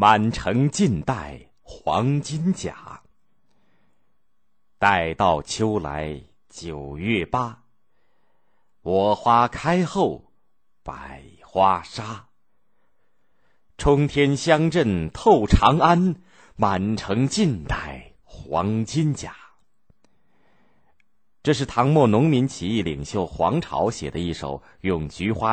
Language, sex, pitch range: Chinese, male, 80-120 Hz